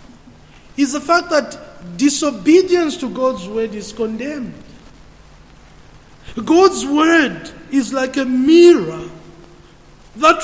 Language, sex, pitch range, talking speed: English, male, 250-320 Hz, 100 wpm